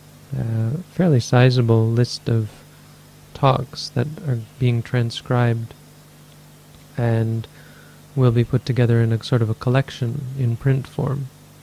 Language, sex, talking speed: English, male, 130 wpm